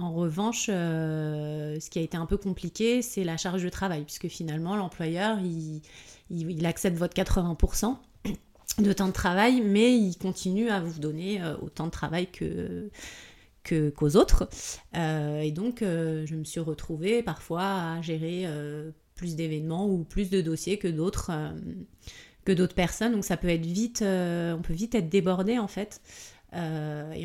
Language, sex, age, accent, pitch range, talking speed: French, female, 30-49, French, 160-195 Hz, 155 wpm